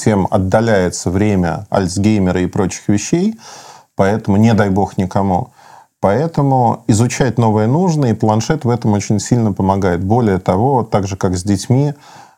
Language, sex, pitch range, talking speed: Russian, male, 100-125 Hz, 145 wpm